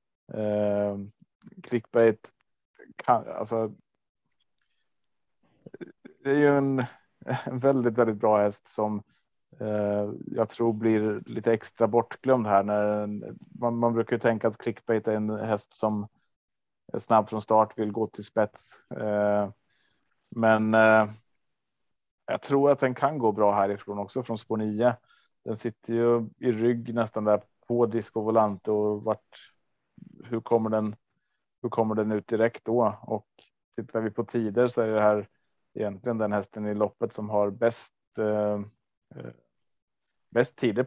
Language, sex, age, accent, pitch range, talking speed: Swedish, male, 30-49, Norwegian, 105-120 Hz, 135 wpm